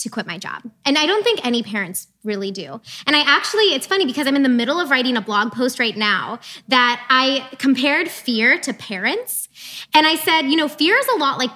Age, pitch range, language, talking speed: 20-39, 235-320 Hz, English, 235 wpm